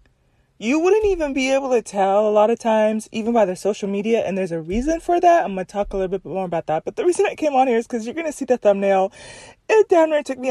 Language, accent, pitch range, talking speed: English, American, 205-275 Hz, 290 wpm